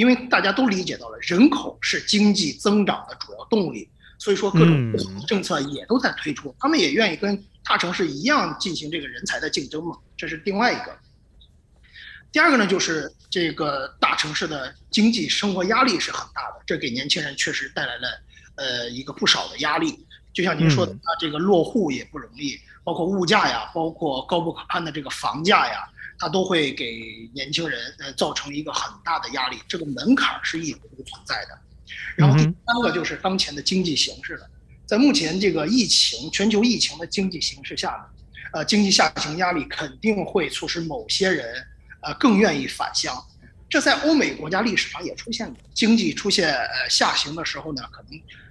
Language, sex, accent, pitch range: Chinese, male, native, 160-220 Hz